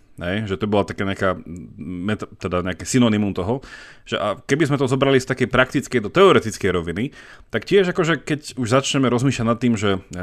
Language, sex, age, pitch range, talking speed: Slovak, male, 30-49, 105-130 Hz, 190 wpm